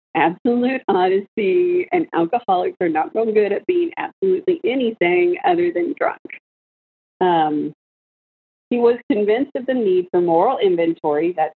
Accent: American